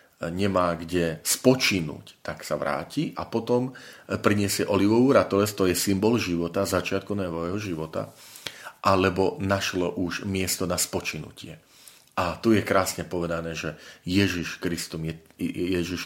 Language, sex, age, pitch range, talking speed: Slovak, male, 40-59, 85-100 Hz, 110 wpm